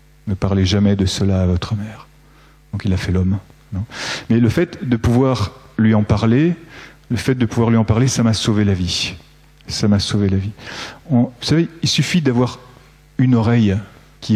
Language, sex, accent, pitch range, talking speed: French, male, French, 110-130 Hz, 200 wpm